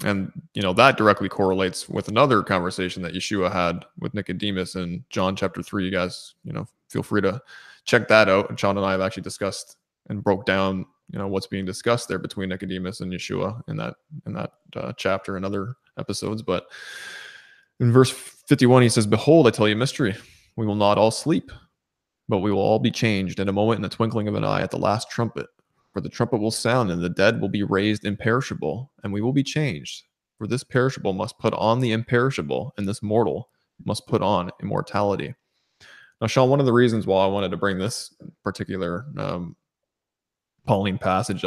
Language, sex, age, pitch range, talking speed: English, male, 20-39, 95-120 Hz, 205 wpm